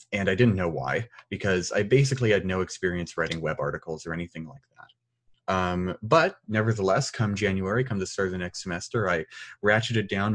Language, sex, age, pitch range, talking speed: English, male, 30-49, 95-120 Hz, 190 wpm